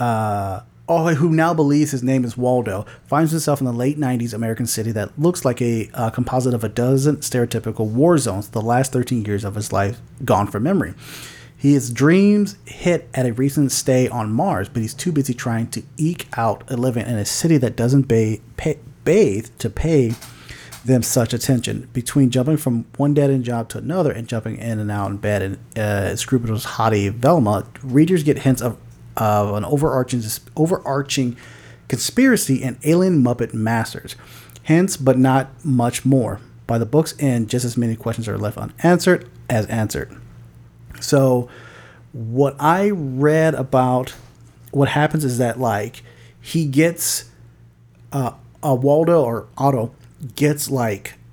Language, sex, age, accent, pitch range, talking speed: English, male, 30-49, American, 115-140 Hz, 165 wpm